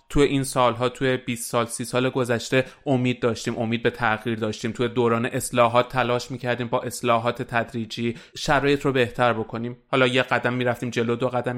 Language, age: Persian, 30-49